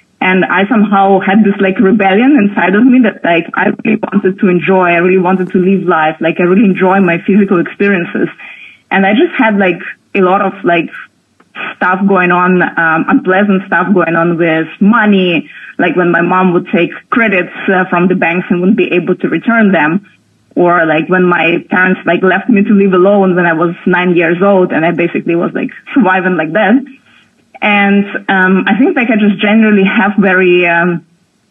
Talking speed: 195 wpm